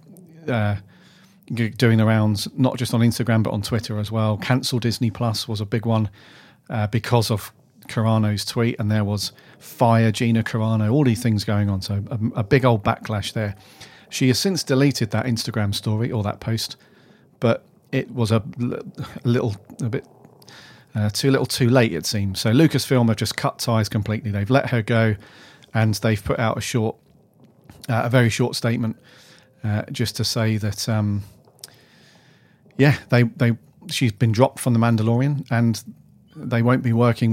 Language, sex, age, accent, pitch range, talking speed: English, male, 40-59, British, 110-130 Hz, 175 wpm